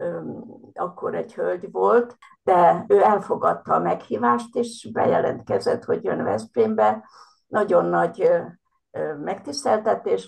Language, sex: Hungarian, female